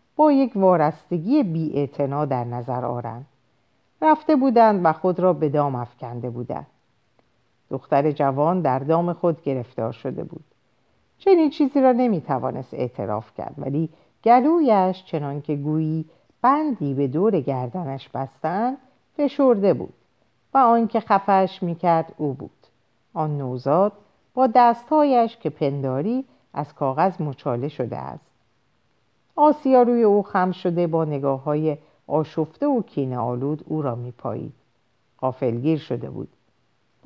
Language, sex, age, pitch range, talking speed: Persian, female, 50-69, 135-195 Hz, 125 wpm